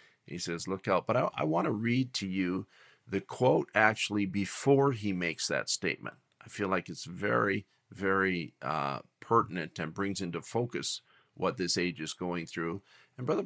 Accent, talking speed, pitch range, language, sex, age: American, 175 wpm, 95-110 Hz, English, male, 50-69